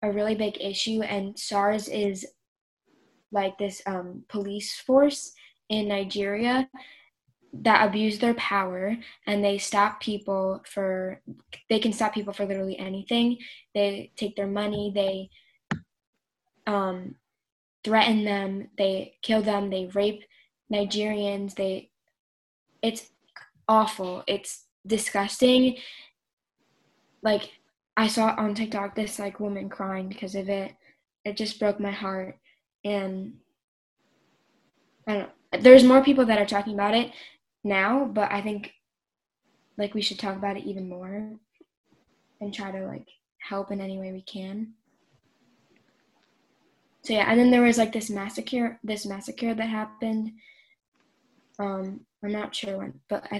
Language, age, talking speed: English, 10-29, 135 wpm